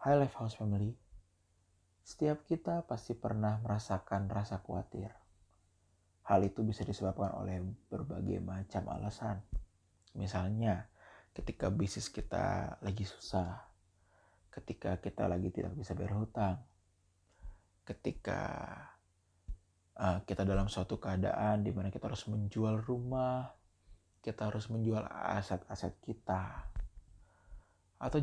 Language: Indonesian